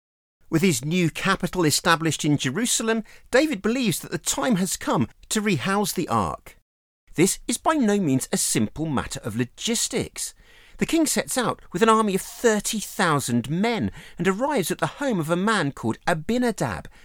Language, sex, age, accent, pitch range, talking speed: English, male, 40-59, British, 145-225 Hz, 170 wpm